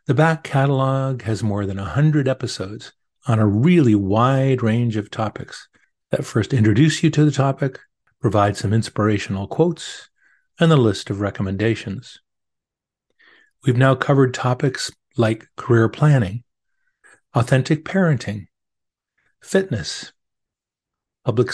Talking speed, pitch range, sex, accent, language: 120 wpm, 115-160 Hz, male, American, English